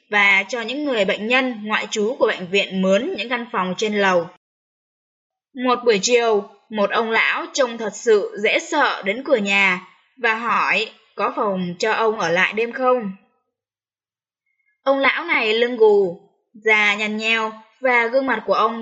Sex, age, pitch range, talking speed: female, 10-29, 195-255 Hz, 170 wpm